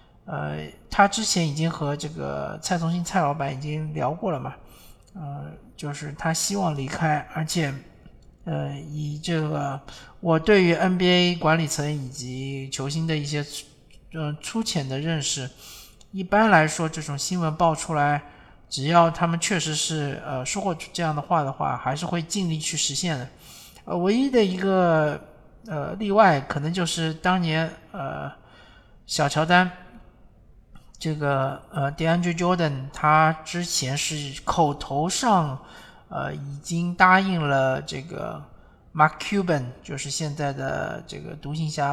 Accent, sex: native, male